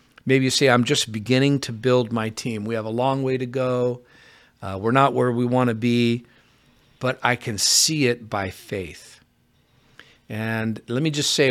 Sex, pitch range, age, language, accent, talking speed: male, 115-140 Hz, 50-69, English, American, 195 wpm